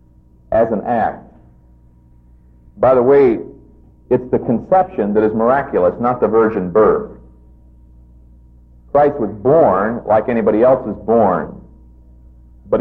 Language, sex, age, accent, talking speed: English, male, 50-69, American, 115 wpm